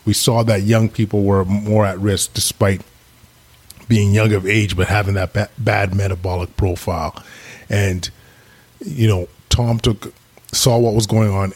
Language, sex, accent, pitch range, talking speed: English, male, American, 100-115 Hz, 160 wpm